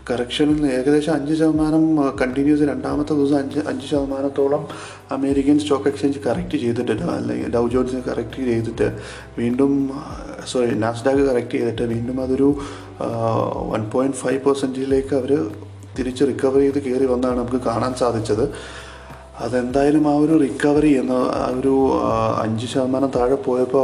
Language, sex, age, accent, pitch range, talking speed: Malayalam, male, 30-49, native, 115-140 Hz, 120 wpm